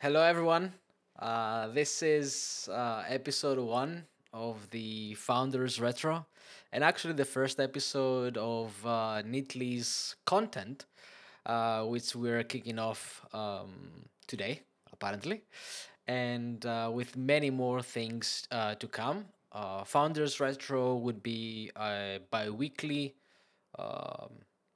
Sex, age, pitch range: male, 20-39, 105-135 Hz